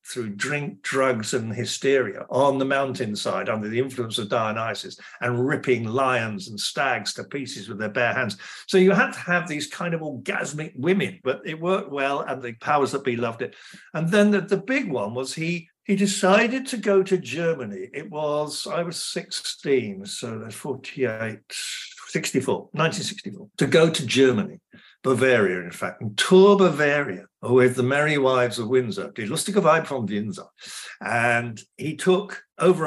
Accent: British